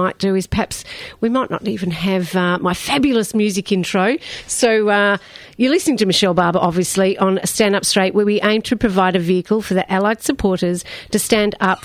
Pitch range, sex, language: 185-240 Hz, female, English